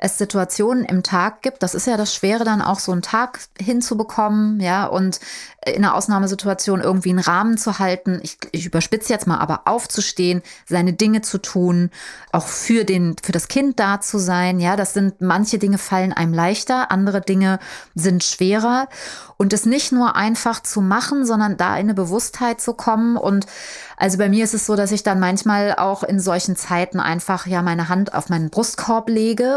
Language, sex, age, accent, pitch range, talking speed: German, female, 30-49, German, 185-225 Hz, 195 wpm